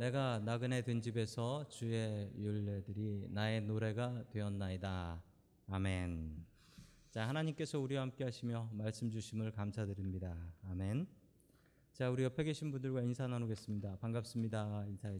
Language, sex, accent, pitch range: Korean, male, native, 105-130 Hz